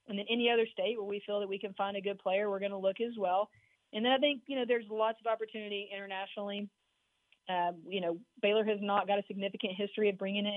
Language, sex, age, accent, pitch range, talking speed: English, female, 30-49, American, 195-220 Hz, 255 wpm